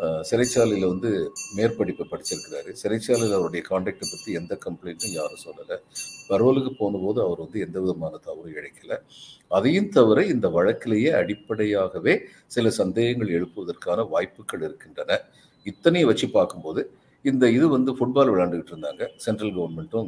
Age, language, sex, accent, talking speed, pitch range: 50-69, Tamil, male, native, 125 wpm, 100-135 Hz